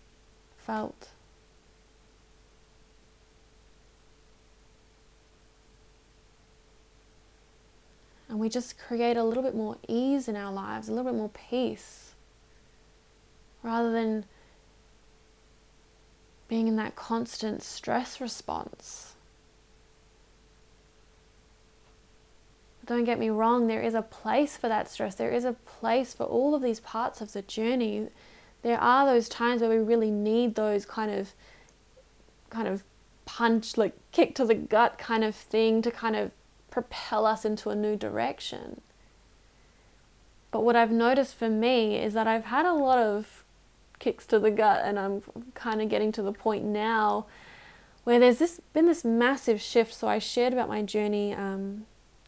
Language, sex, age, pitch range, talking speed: English, female, 10-29, 215-240 Hz, 140 wpm